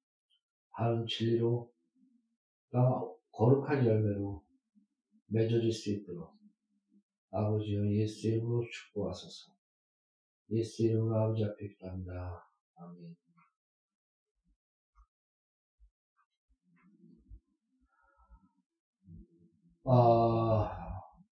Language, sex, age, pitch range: Korean, male, 50-69, 100-155 Hz